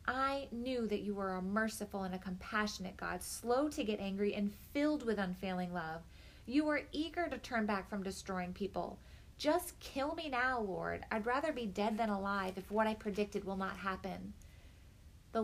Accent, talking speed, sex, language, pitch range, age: American, 185 wpm, female, English, 185-220 Hz, 30-49